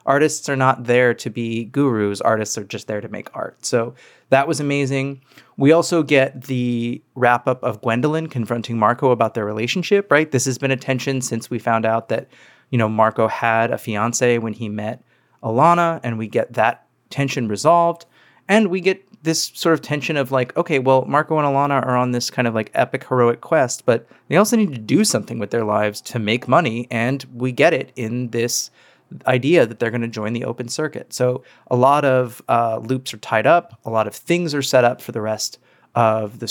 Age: 30-49